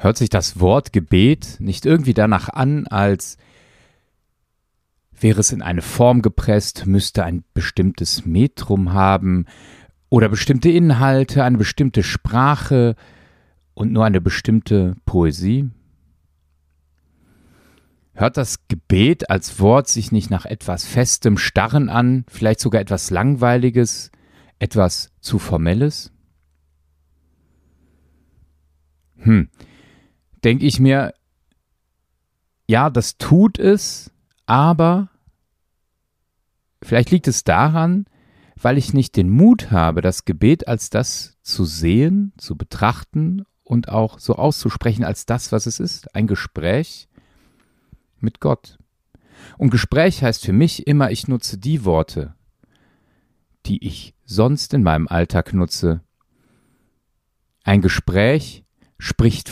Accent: German